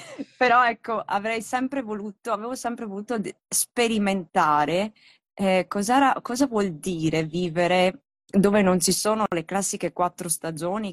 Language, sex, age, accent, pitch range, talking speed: Italian, female, 20-39, native, 170-220 Hz, 120 wpm